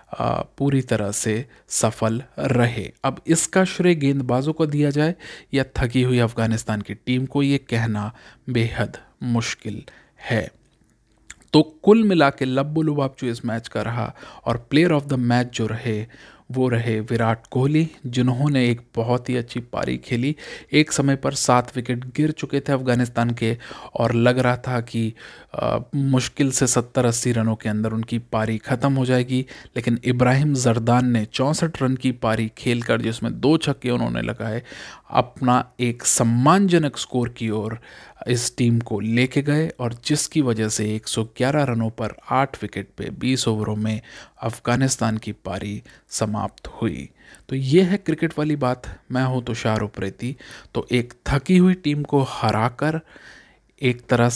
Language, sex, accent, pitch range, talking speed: Hindi, male, native, 115-140 Hz, 155 wpm